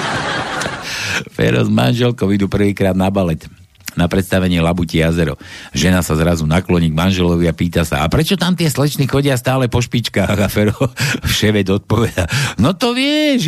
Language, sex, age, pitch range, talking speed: Slovak, male, 60-79, 95-145 Hz, 155 wpm